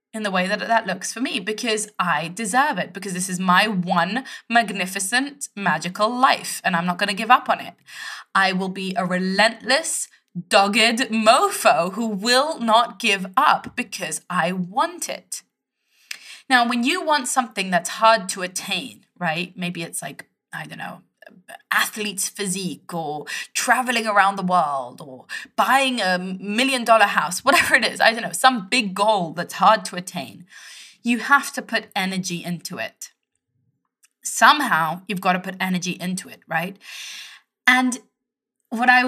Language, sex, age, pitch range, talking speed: English, female, 20-39, 185-245 Hz, 165 wpm